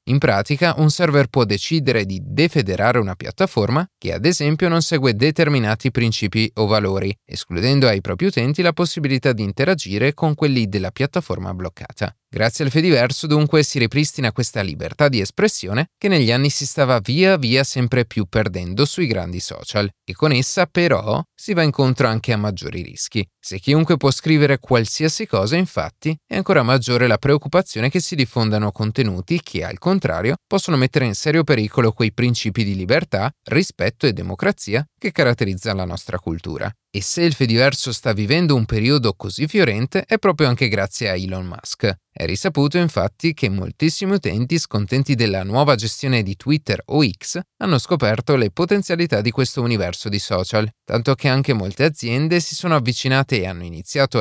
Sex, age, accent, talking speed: male, 30-49, native, 170 wpm